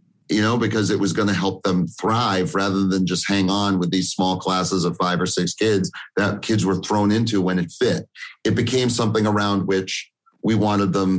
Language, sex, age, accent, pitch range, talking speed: English, male, 40-59, American, 95-115 Hz, 215 wpm